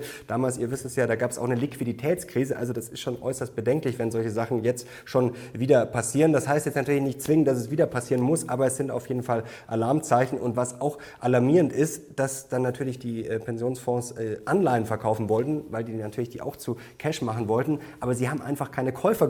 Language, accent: German, German